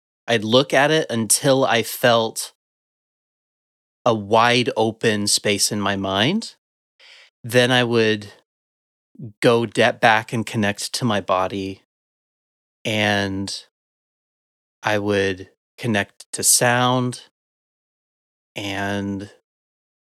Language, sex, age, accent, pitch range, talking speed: English, male, 30-49, American, 110-145 Hz, 95 wpm